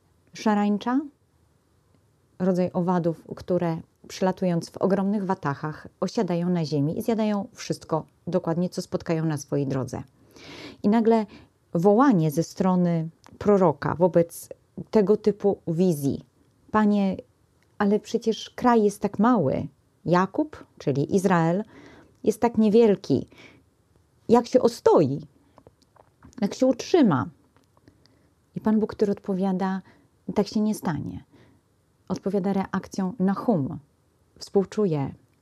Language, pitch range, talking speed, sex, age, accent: Polish, 170-220 Hz, 110 wpm, female, 30-49, native